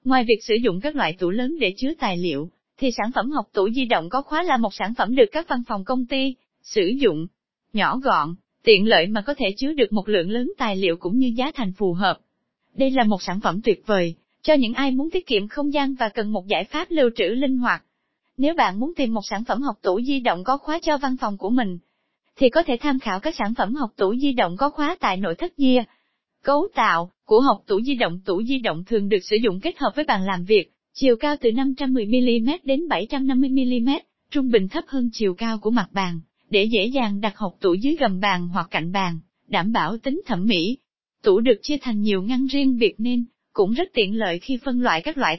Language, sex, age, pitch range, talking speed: Vietnamese, female, 20-39, 205-275 Hz, 240 wpm